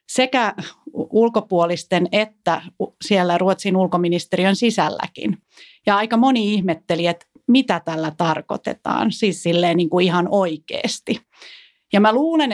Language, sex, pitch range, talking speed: Finnish, female, 175-220 Hz, 95 wpm